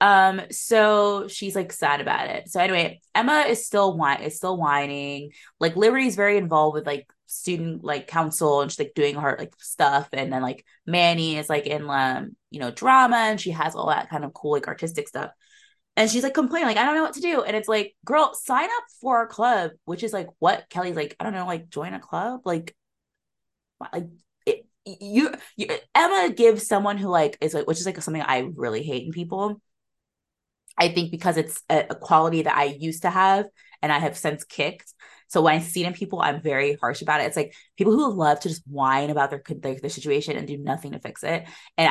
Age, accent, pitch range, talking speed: 20-39, American, 150-220 Hz, 225 wpm